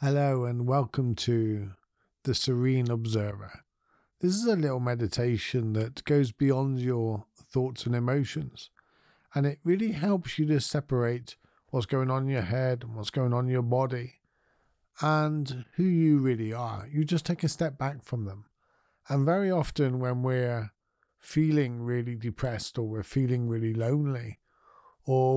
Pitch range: 120-155 Hz